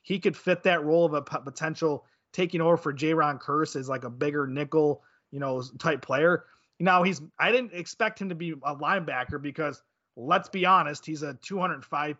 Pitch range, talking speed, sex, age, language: 145-175 Hz, 195 wpm, male, 30-49, English